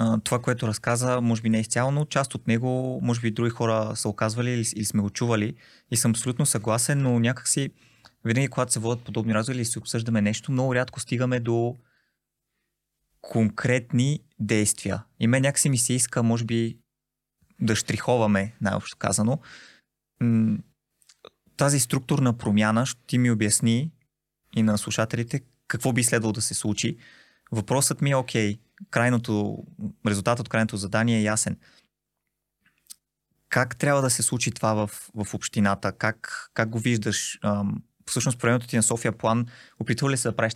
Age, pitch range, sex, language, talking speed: 20-39, 110-130 Hz, male, Bulgarian, 160 wpm